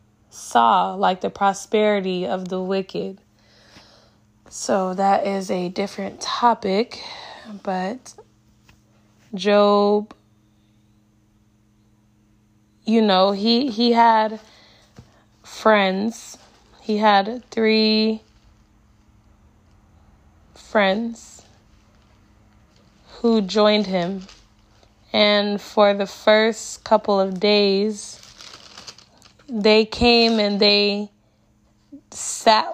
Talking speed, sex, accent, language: 75 wpm, female, American, English